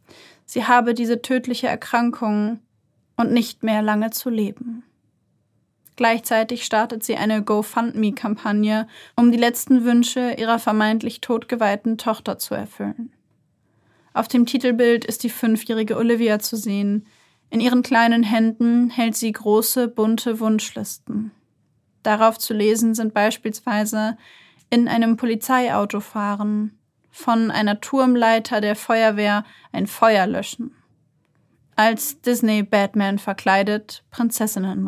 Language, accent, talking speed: German, German, 110 wpm